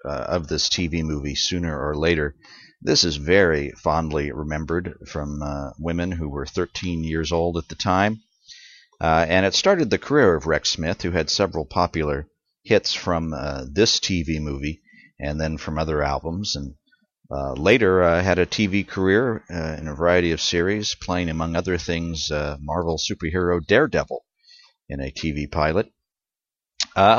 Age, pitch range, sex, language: 50-69, 75-95 Hz, male, English